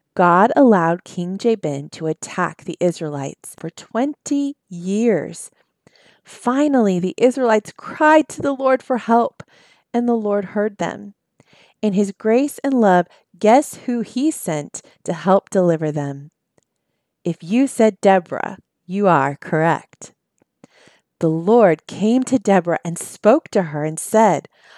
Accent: American